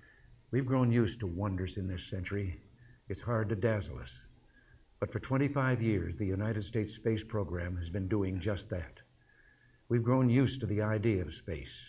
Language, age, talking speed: English, 60-79, 175 wpm